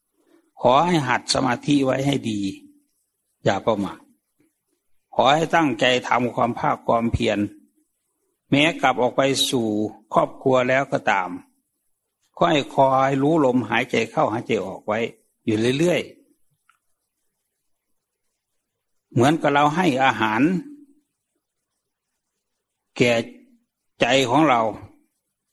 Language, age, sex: English, 60-79, male